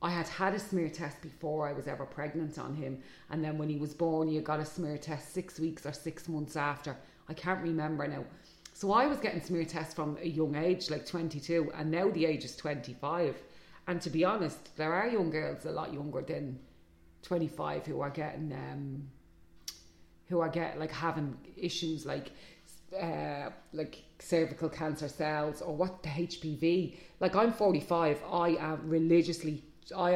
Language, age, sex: English, 30-49, female